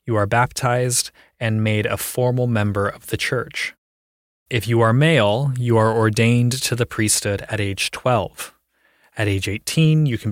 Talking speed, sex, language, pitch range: 170 wpm, male, English, 105-130 Hz